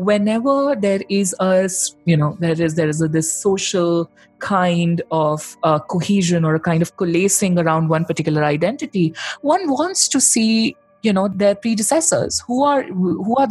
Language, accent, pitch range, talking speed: English, Indian, 155-200 Hz, 170 wpm